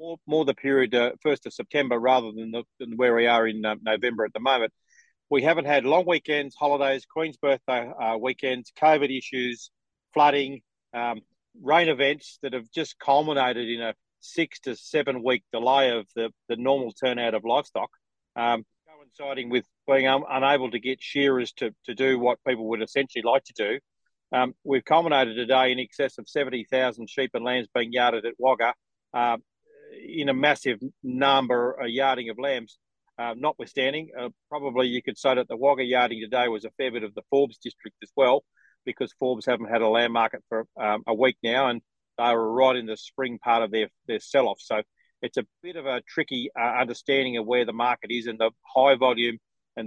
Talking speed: 190 wpm